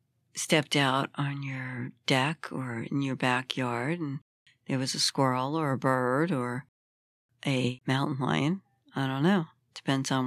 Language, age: English, 60-79